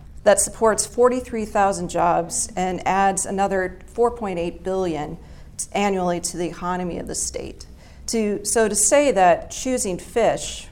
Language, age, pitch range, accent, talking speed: English, 40-59, 170-205 Hz, American, 125 wpm